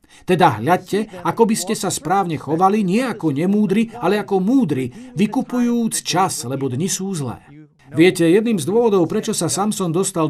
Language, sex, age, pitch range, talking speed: Slovak, male, 50-69, 155-205 Hz, 165 wpm